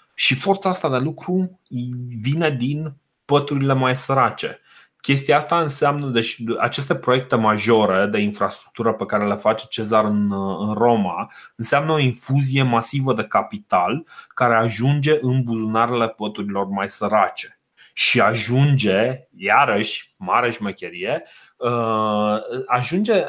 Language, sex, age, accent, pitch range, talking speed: Romanian, male, 30-49, native, 110-150 Hz, 115 wpm